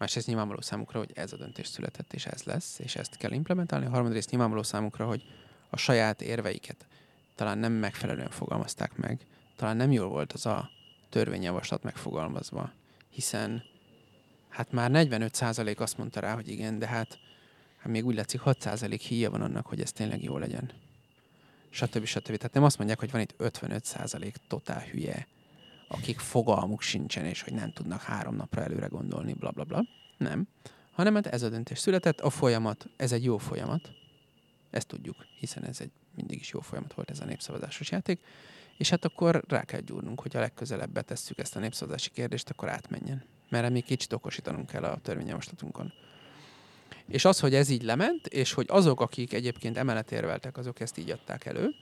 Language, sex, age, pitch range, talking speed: Hungarian, male, 30-49, 115-145 Hz, 175 wpm